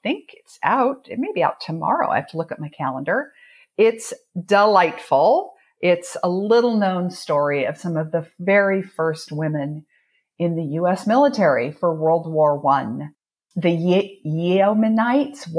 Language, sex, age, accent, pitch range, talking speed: English, female, 50-69, American, 155-195 Hz, 150 wpm